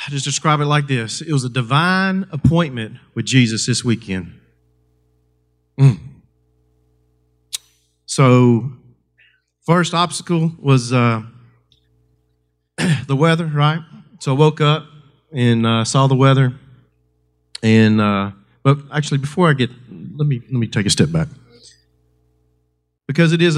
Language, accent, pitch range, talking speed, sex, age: English, American, 95-150 Hz, 130 wpm, male, 40-59